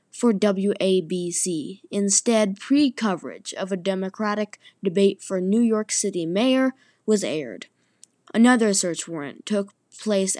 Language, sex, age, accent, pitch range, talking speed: English, female, 20-39, American, 190-235 Hz, 115 wpm